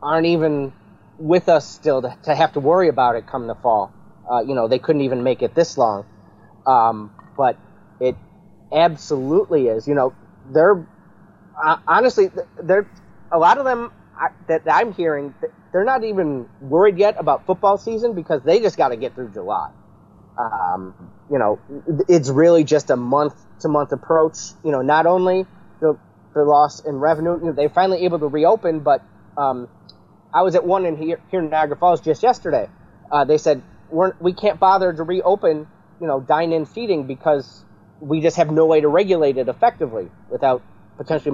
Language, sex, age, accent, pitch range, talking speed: English, male, 30-49, American, 130-180 Hz, 180 wpm